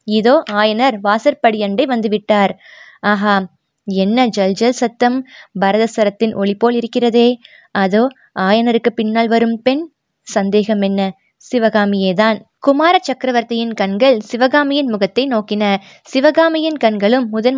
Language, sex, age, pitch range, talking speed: Tamil, female, 20-39, 210-250 Hz, 100 wpm